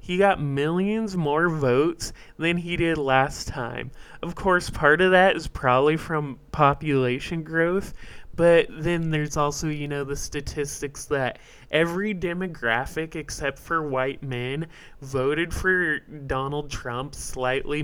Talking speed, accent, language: 135 wpm, American, English